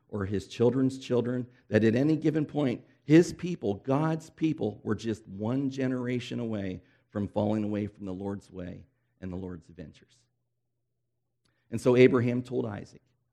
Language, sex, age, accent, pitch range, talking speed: English, male, 50-69, American, 105-125 Hz, 155 wpm